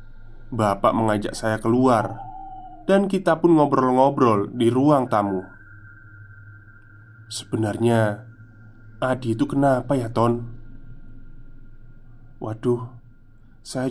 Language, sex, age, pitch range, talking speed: Indonesian, male, 20-39, 110-140 Hz, 80 wpm